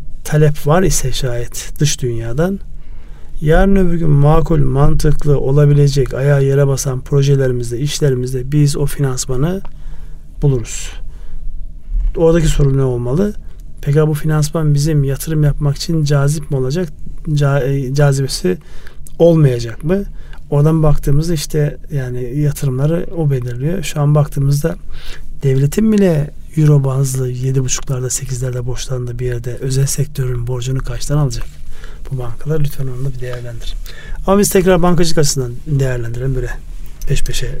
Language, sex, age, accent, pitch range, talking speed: Turkish, male, 40-59, native, 125-155 Hz, 125 wpm